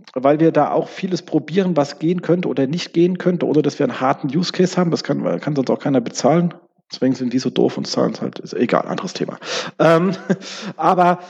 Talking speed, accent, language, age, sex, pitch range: 225 wpm, German, German, 40-59, male, 140-175 Hz